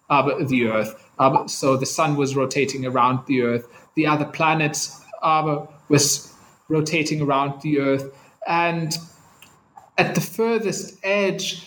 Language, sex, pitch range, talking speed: English, male, 140-170 Hz, 135 wpm